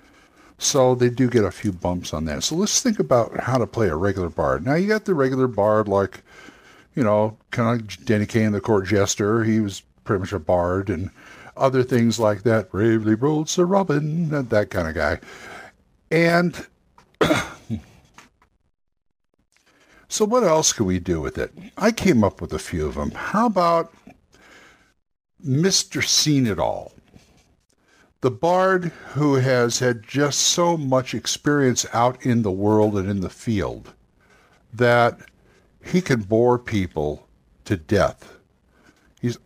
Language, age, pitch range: English, 60-79, 100-140 Hz